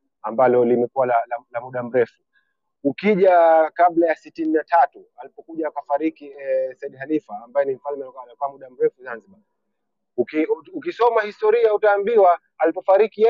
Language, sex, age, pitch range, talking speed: Swahili, male, 30-49, 145-195 Hz, 115 wpm